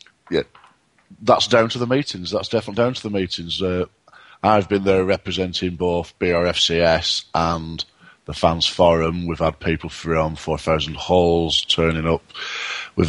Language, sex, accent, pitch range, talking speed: English, male, British, 90-100 Hz, 145 wpm